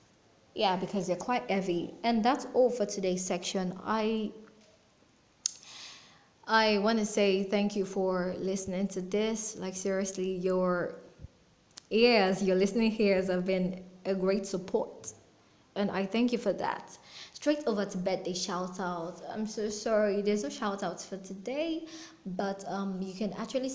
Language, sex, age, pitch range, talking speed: English, female, 20-39, 185-220 Hz, 145 wpm